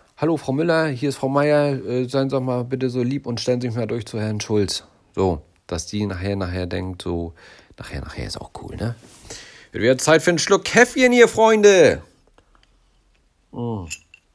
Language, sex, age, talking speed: German, male, 40-59, 195 wpm